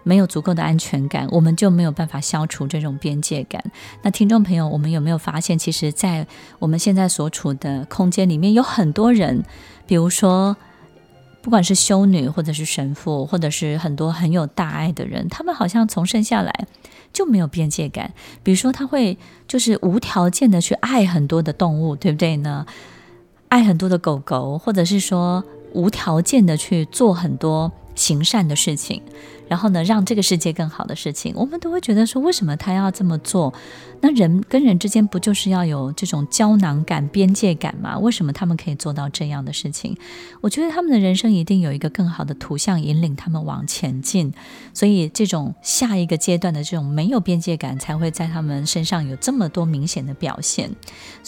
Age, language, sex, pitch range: 20-39, Chinese, female, 155-205 Hz